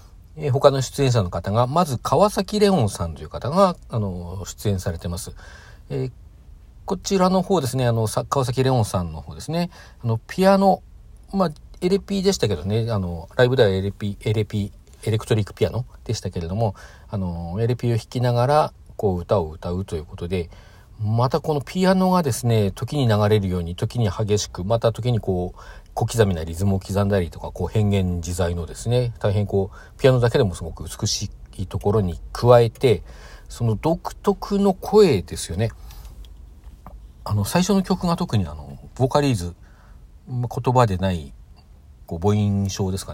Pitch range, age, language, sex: 90-120 Hz, 50-69, Japanese, male